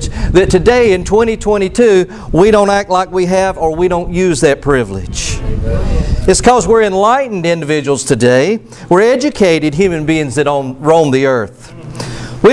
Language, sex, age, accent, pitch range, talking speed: English, male, 50-69, American, 165-230 Hz, 150 wpm